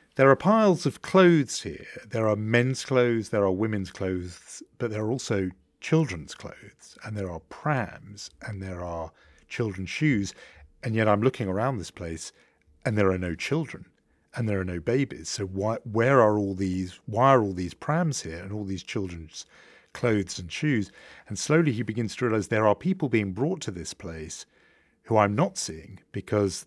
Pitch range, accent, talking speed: 95-120 Hz, British, 190 wpm